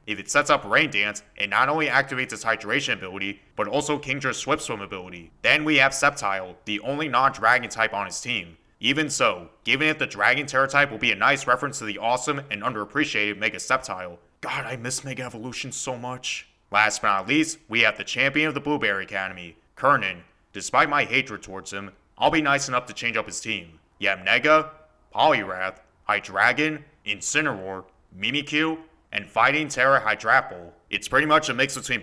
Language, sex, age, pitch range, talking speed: English, male, 20-39, 100-140 Hz, 185 wpm